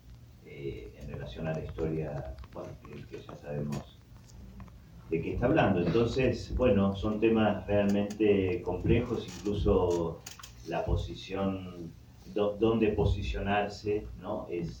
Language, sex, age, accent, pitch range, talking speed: Portuguese, male, 40-59, Argentinian, 80-100 Hz, 120 wpm